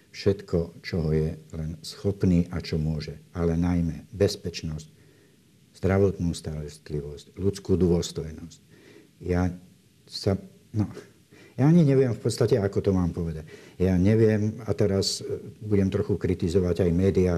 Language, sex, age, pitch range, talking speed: Slovak, male, 60-79, 80-100 Hz, 125 wpm